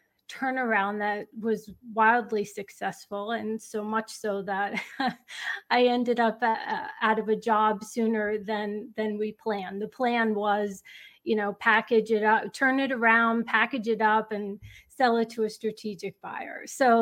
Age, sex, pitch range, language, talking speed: 30-49, female, 210-240 Hz, English, 160 wpm